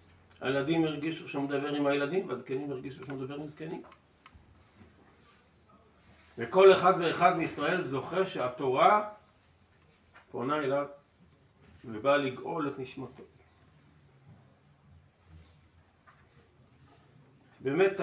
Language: Hebrew